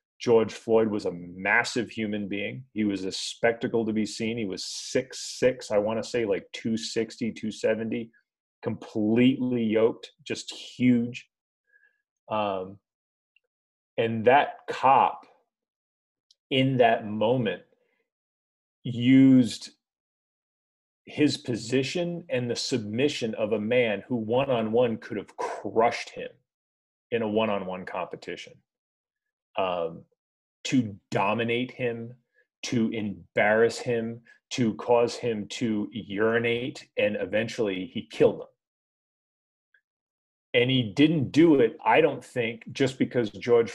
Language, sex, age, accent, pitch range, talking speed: English, male, 30-49, American, 105-125 Hz, 110 wpm